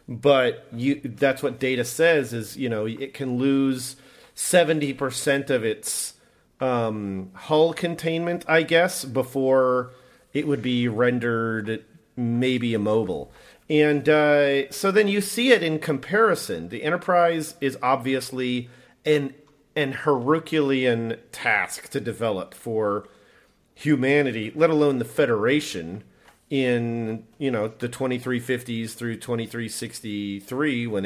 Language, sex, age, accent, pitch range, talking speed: English, male, 40-59, American, 120-155 Hz, 125 wpm